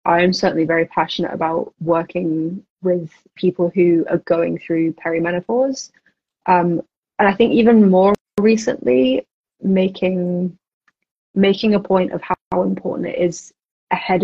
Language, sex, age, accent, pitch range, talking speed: English, female, 20-39, British, 175-195 Hz, 130 wpm